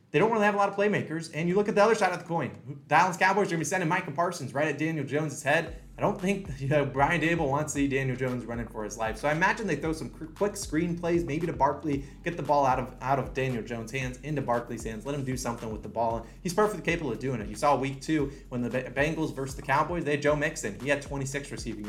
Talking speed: 285 wpm